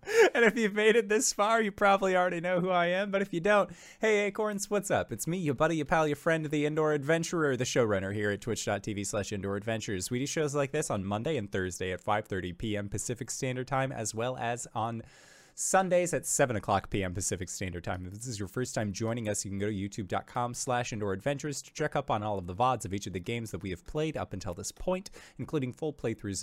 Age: 20-39